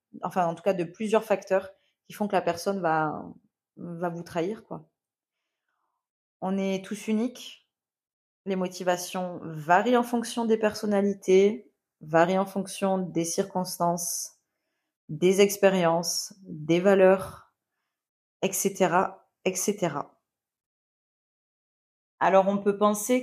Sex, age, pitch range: female, 20-39, 170-200 Hz